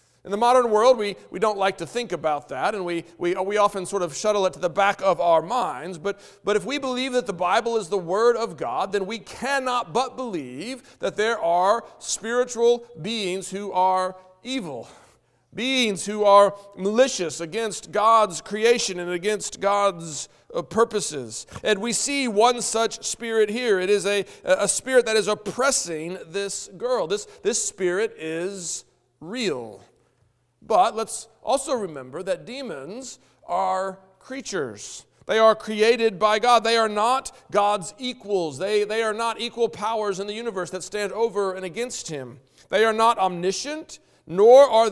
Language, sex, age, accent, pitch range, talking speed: English, male, 40-59, American, 190-235 Hz, 170 wpm